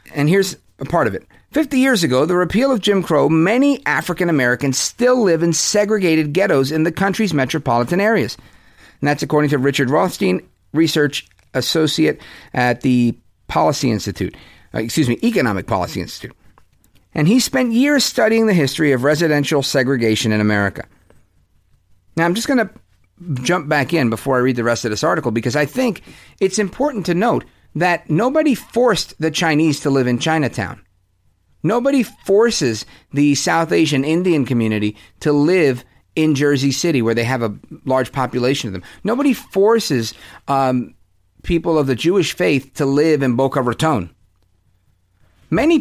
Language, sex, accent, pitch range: English, male, American, 125-185 Hz